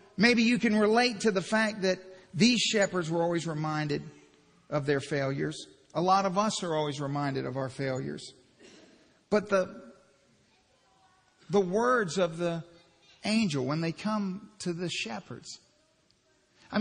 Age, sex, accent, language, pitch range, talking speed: 50-69, male, American, English, 165-210 Hz, 145 wpm